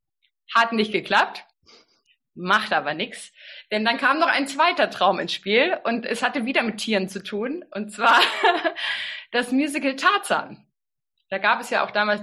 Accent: German